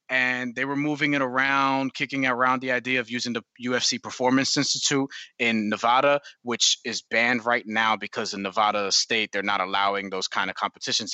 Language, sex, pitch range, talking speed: English, male, 115-140 Hz, 185 wpm